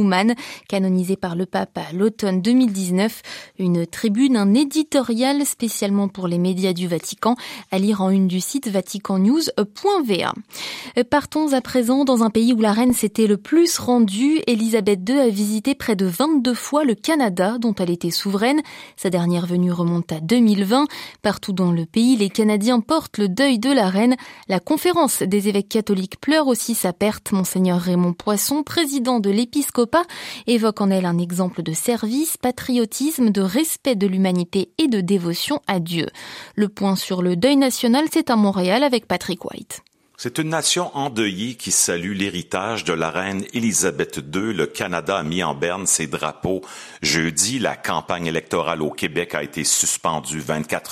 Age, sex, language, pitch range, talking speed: 20-39, female, French, 150-245 Hz, 170 wpm